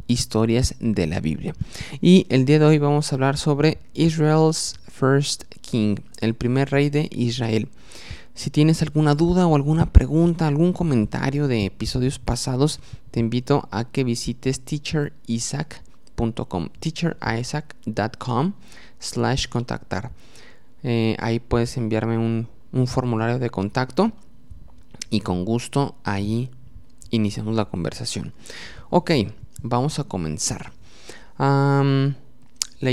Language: English